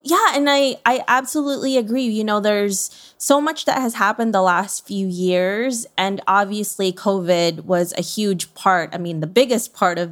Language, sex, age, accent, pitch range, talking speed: English, female, 20-39, American, 180-220 Hz, 185 wpm